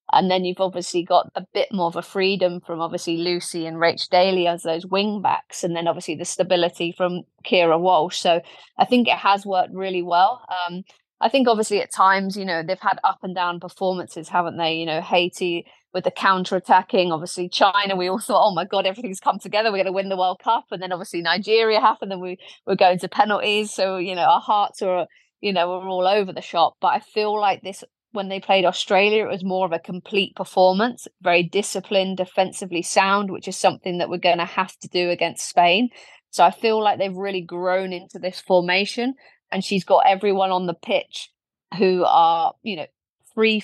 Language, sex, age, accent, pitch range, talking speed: English, female, 30-49, British, 175-195 Hz, 215 wpm